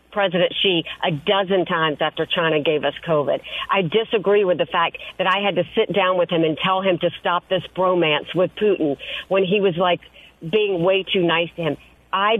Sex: female